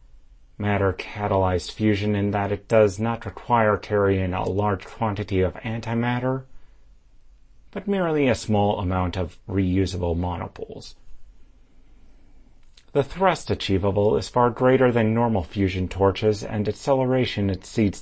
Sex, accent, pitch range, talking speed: male, American, 95-120 Hz, 120 wpm